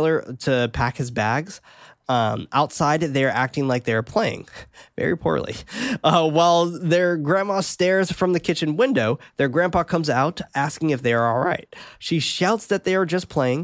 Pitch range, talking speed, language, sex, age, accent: 120-155 Hz, 165 wpm, English, male, 20-39, American